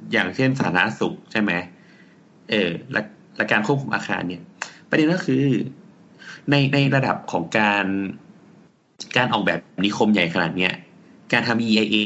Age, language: 30-49, Thai